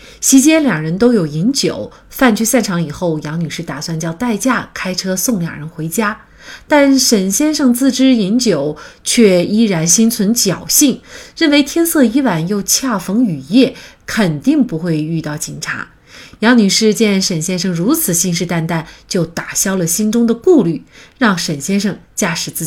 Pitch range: 165-245 Hz